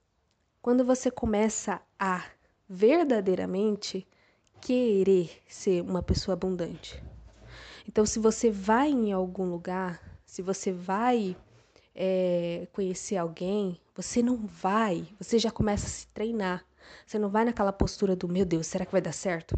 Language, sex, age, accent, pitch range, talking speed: Portuguese, female, 20-39, Brazilian, 185-230 Hz, 135 wpm